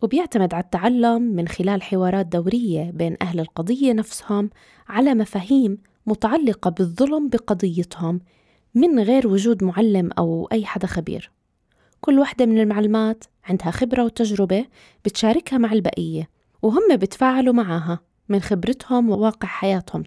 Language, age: Arabic, 20-39